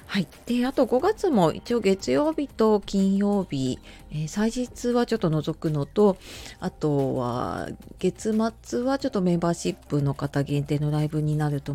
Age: 40-59